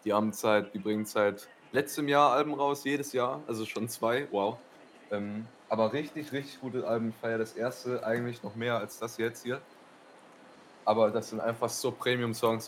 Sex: male